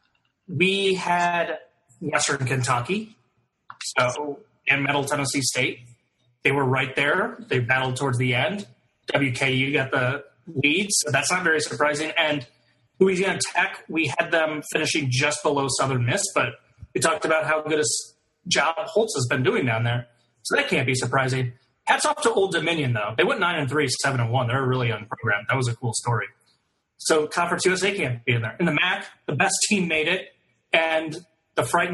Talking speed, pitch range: 175 wpm, 130-190 Hz